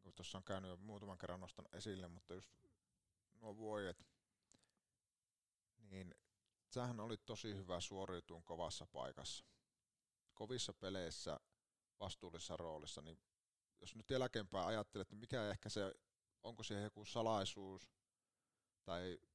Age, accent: 30-49, native